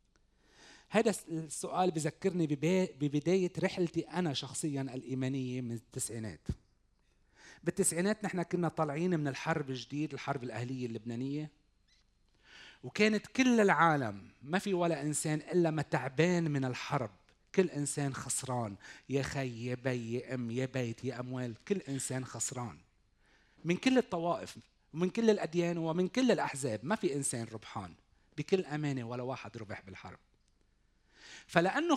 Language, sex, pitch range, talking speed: Arabic, male, 125-175 Hz, 130 wpm